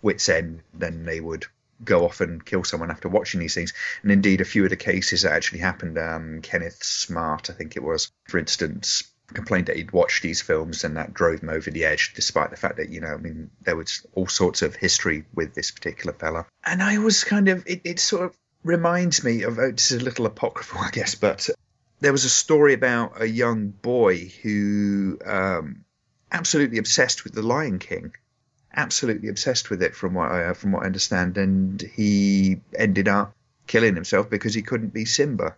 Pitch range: 90-115 Hz